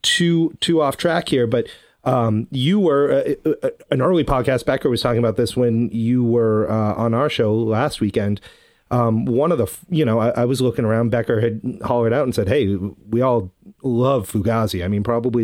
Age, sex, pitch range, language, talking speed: 30-49, male, 110-125 Hz, English, 200 wpm